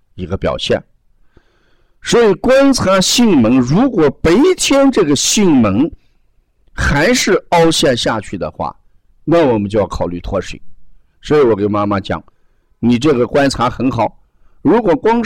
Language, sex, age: Chinese, male, 50-69